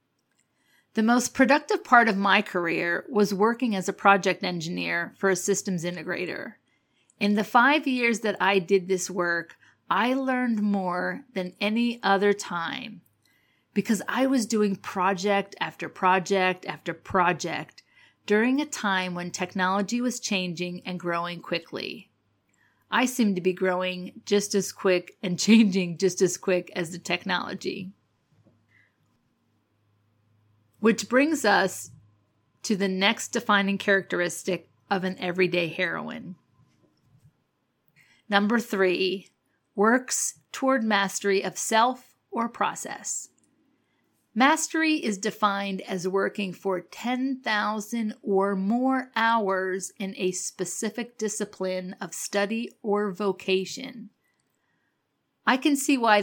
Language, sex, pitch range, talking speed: English, female, 180-220 Hz, 120 wpm